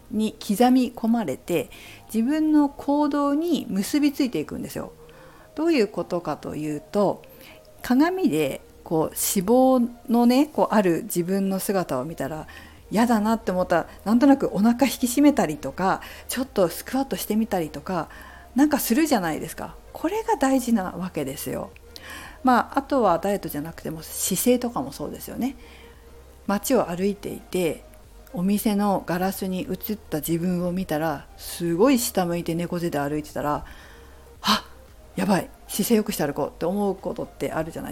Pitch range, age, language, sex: 170-265 Hz, 50-69, Japanese, female